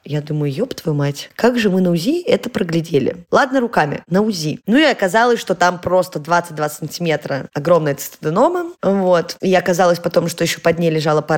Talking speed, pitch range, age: 190 wpm, 165-210 Hz, 20-39